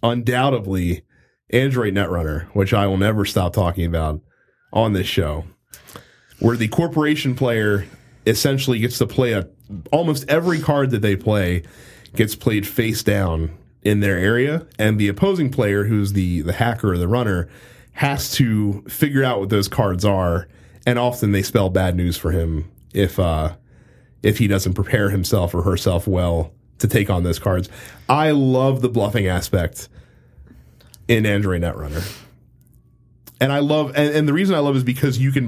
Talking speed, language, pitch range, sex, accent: 170 wpm, English, 95-125 Hz, male, American